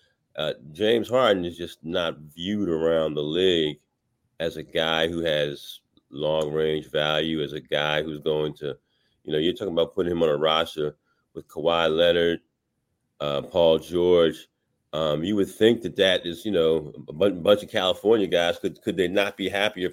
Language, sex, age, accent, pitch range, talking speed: English, male, 40-59, American, 85-125 Hz, 185 wpm